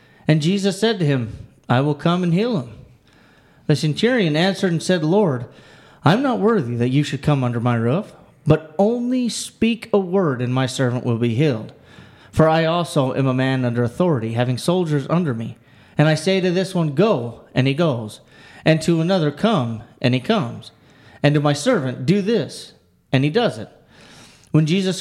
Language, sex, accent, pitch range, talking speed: English, male, American, 130-180 Hz, 190 wpm